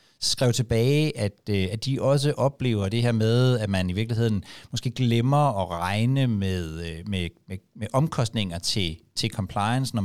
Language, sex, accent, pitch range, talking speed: Danish, male, native, 100-125 Hz, 160 wpm